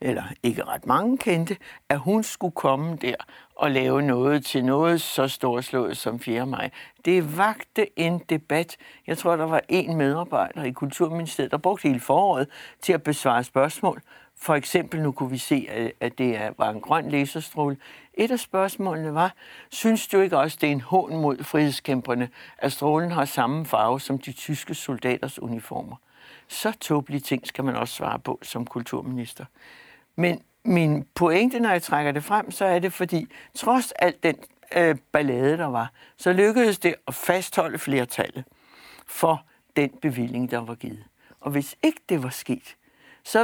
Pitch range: 135-180 Hz